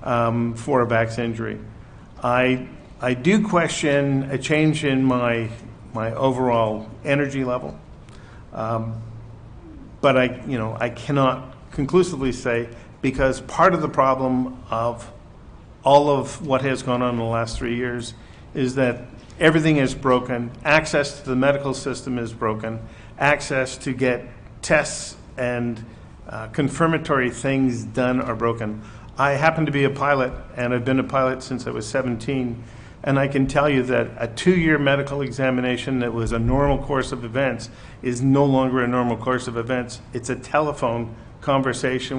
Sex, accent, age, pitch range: male, American, 50-69, 120-140 Hz